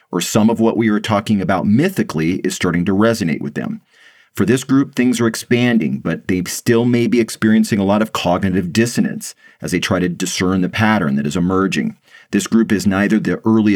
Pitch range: 90-110 Hz